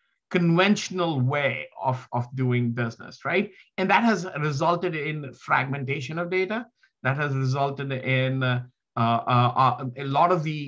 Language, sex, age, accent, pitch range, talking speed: English, male, 50-69, Indian, 130-170 Hz, 140 wpm